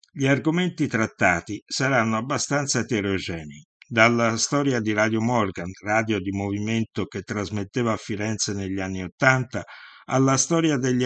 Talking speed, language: 130 wpm, Italian